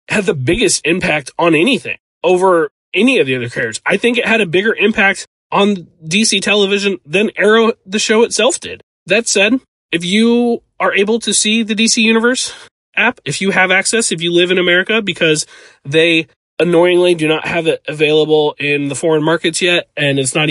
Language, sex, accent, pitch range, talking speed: English, male, American, 155-205 Hz, 190 wpm